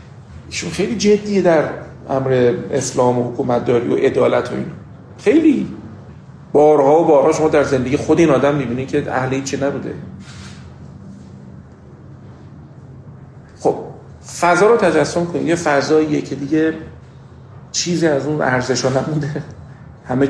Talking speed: 120 wpm